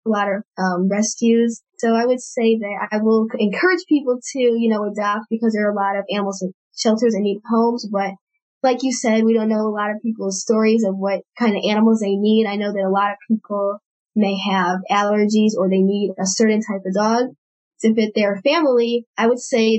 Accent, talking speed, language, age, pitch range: American, 225 wpm, English, 10-29, 200-230 Hz